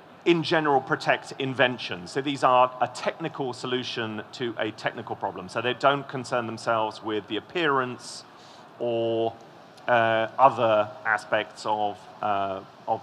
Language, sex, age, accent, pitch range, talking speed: English, male, 40-59, British, 115-145 Hz, 135 wpm